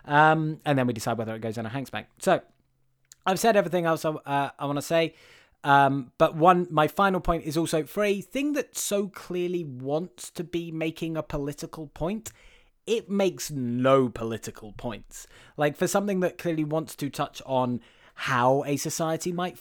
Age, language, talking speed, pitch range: 20-39, English, 185 wpm, 125-175 Hz